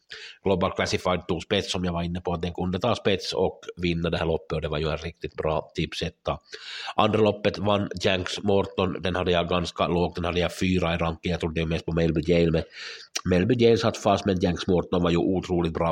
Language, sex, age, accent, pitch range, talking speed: Swedish, male, 60-79, Finnish, 85-95 Hz, 225 wpm